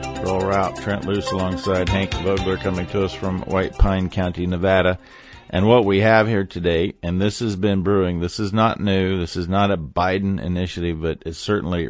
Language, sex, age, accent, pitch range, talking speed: English, male, 50-69, American, 90-110 Hz, 195 wpm